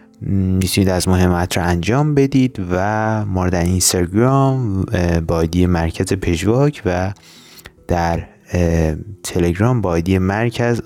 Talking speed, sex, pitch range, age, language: 100 wpm, male, 90-115 Hz, 30-49, Persian